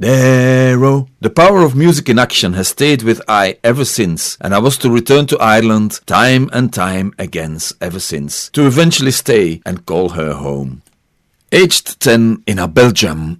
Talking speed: 170 wpm